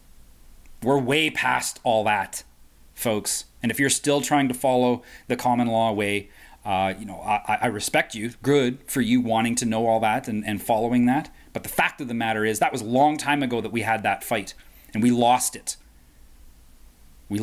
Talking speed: 205 wpm